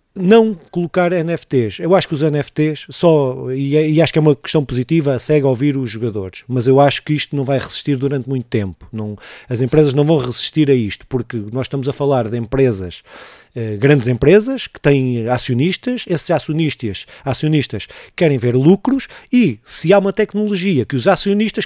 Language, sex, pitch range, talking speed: Portuguese, male, 140-190 Hz, 190 wpm